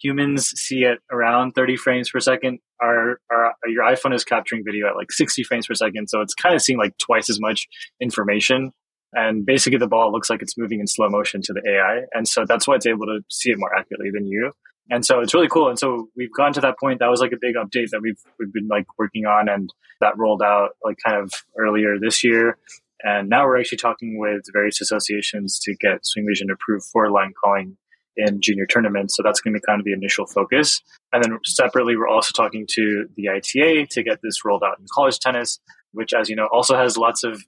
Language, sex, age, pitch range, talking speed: English, male, 20-39, 105-125 Hz, 230 wpm